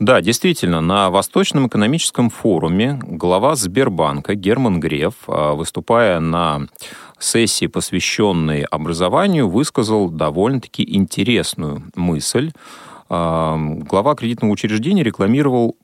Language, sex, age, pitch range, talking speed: Russian, male, 30-49, 80-125 Hz, 85 wpm